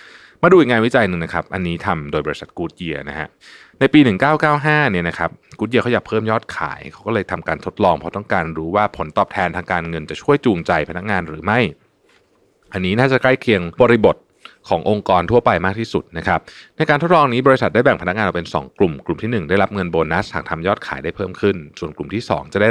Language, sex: Thai, male